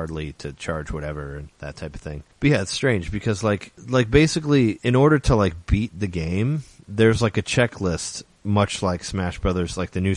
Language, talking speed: English, 200 wpm